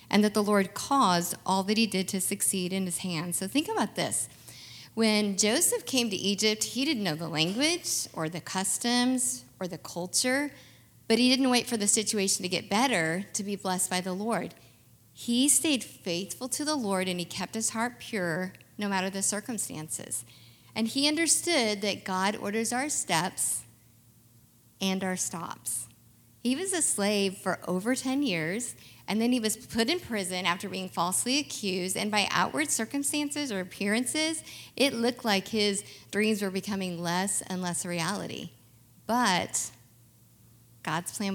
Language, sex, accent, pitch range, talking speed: English, female, American, 175-230 Hz, 170 wpm